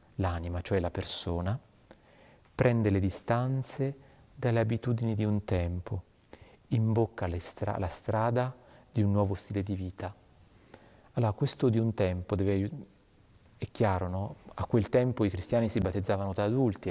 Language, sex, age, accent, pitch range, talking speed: Italian, male, 40-59, native, 95-115 Hz, 145 wpm